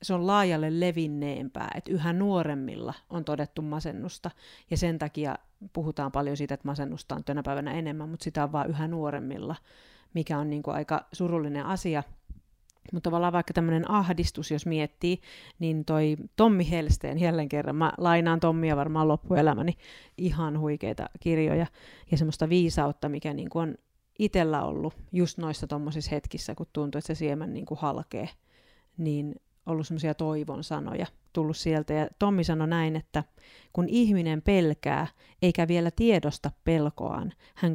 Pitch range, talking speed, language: 150-175 Hz, 155 wpm, Finnish